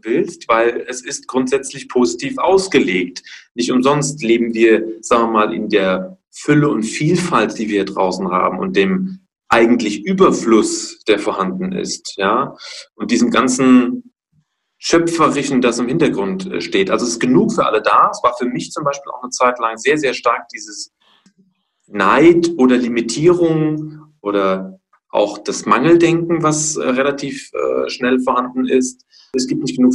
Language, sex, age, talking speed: German, male, 40-59, 160 wpm